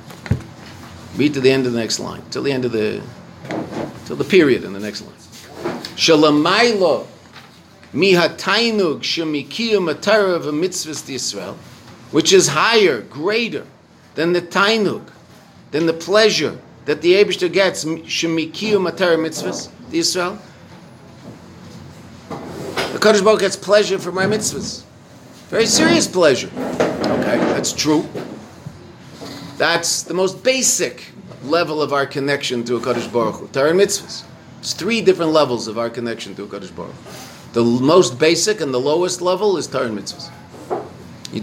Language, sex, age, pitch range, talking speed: English, male, 50-69, 130-195 Hz, 140 wpm